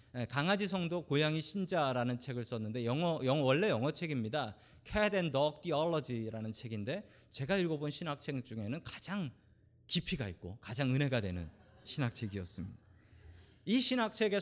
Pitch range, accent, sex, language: 115-180 Hz, native, male, Korean